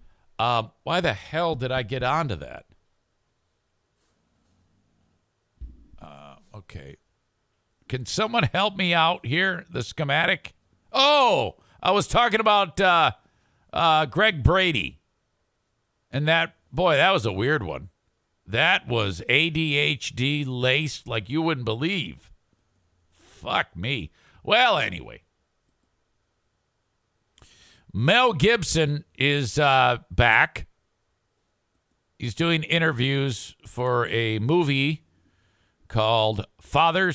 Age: 50-69